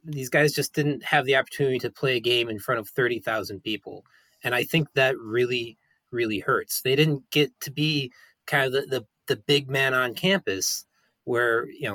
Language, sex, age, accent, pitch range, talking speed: English, male, 20-39, American, 130-160 Hz, 200 wpm